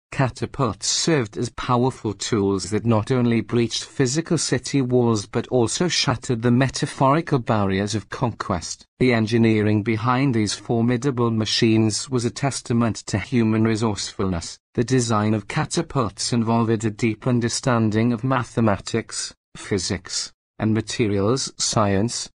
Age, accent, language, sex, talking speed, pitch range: 40-59, British, English, male, 125 wpm, 110-125 Hz